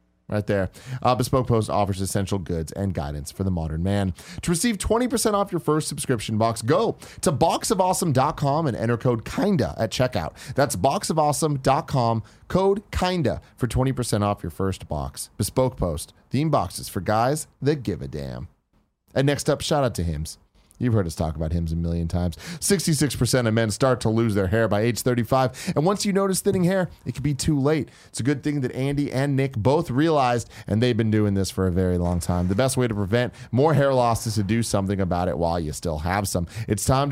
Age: 30-49